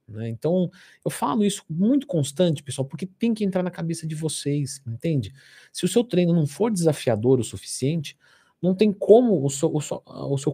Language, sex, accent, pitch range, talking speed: Portuguese, male, Brazilian, 140-210 Hz, 195 wpm